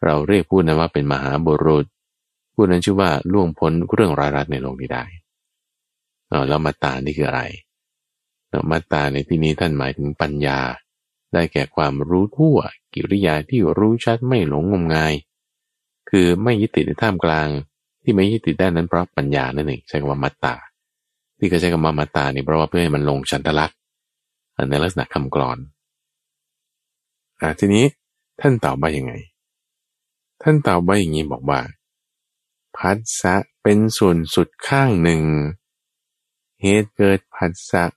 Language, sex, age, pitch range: Thai, male, 20-39, 75-100 Hz